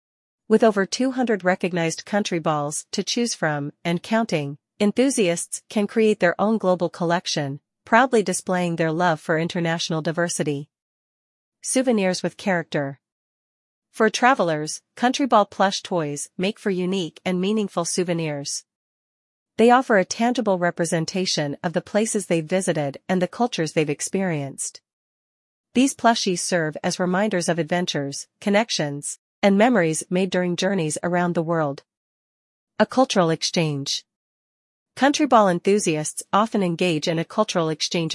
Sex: female